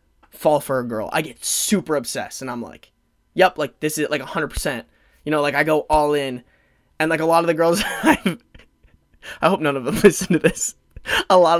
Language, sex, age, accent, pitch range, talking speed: English, male, 20-39, American, 130-175 Hz, 220 wpm